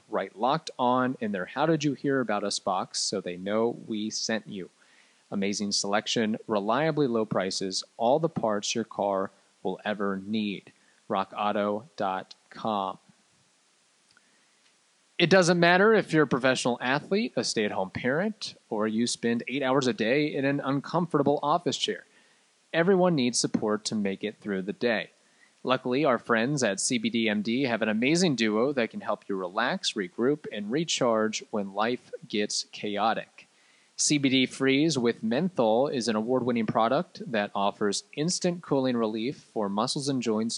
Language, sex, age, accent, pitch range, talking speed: English, male, 30-49, American, 105-145 Hz, 150 wpm